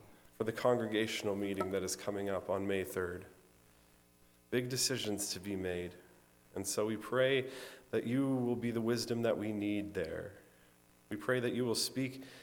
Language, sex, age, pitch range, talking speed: English, male, 40-59, 90-130 Hz, 175 wpm